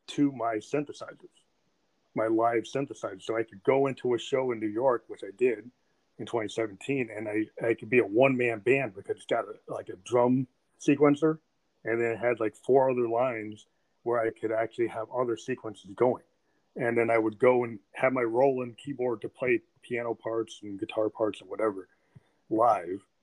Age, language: 30-49, English